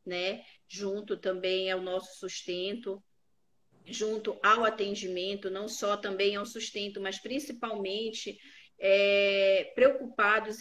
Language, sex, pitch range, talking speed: Portuguese, female, 195-245 Hz, 100 wpm